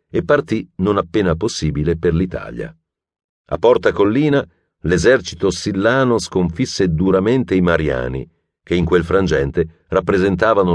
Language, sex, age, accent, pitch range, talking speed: Italian, male, 50-69, native, 80-95 Hz, 115 wpm